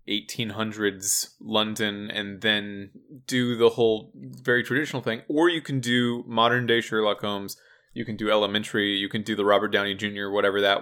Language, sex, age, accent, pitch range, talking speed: English, male, 20-39, American, 105-125 Hz, 170 wpm